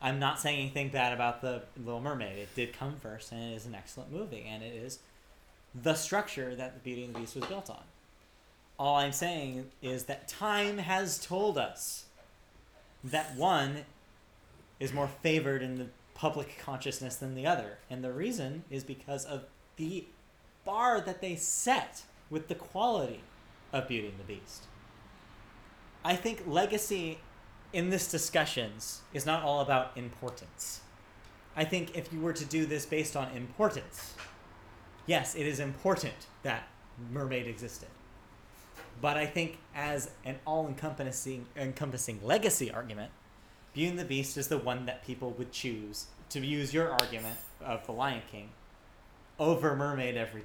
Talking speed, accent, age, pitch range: 155 wpm, American, 30-49, 115-150 Hz